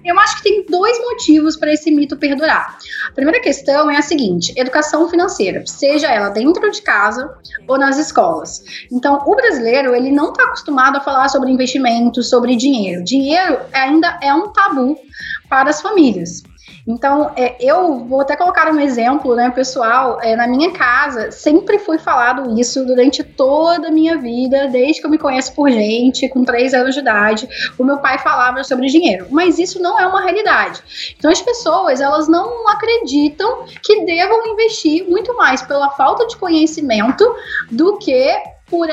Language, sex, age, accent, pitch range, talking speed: Portuguese, female, 10-29, Brazilian, 260-350 Hz, 170 wpm